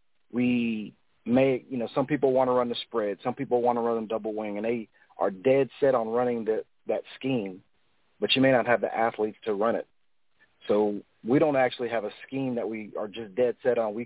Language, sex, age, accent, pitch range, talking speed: English, male, 40-59, American, 115-135 Hz, 225 wpm